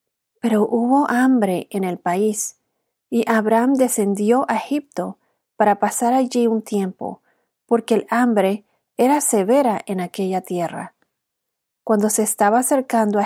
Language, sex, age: Spanish, female, 30-49